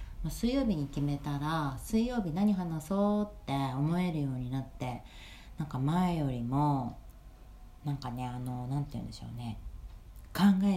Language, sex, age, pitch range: Japanese, female, 40-59, 120-155 Hz